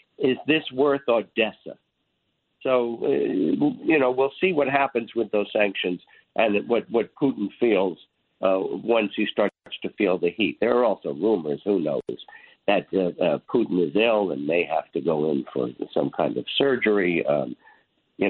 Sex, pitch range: male, 100-130 Hz